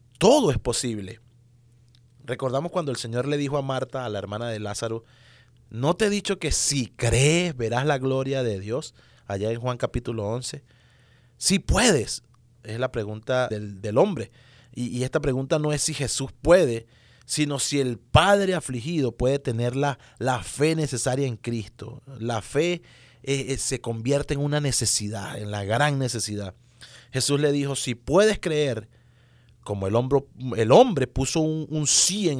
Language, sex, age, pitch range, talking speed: English, male, 30-49, 120-145 Hz, 165 wpm